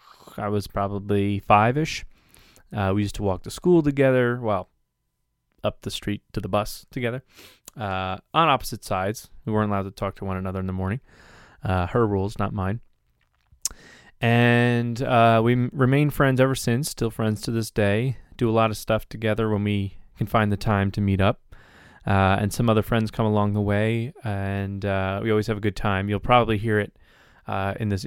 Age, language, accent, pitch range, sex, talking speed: 20-39, English, American, 100-115 Hz, male, 190 wpm